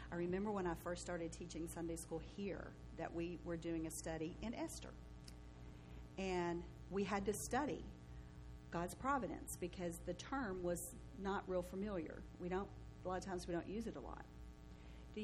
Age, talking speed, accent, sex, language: 50-69, 175 wpm, American, female, English